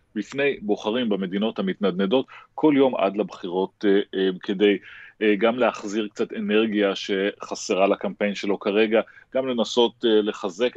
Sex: male